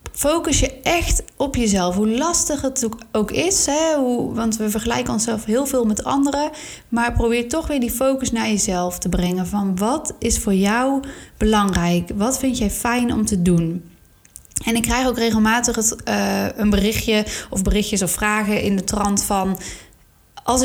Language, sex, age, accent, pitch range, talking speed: Dutch, female, 30-49, Dutch, 195-250 Hz, 170 wpm